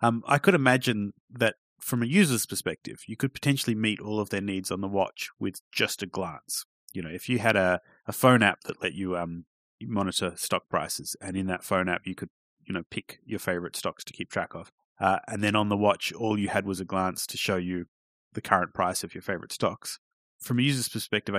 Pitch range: 90-110 Hz